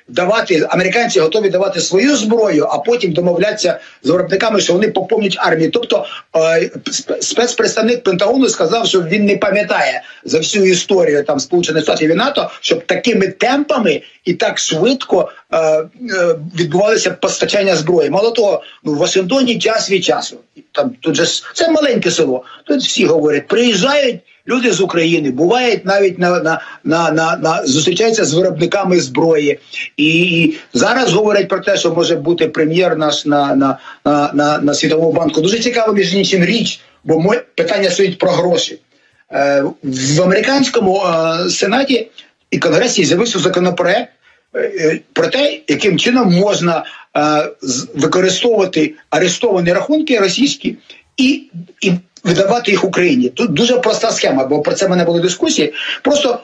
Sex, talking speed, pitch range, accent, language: male, 140 wpm, 160-235 Hz, native, Ukrainian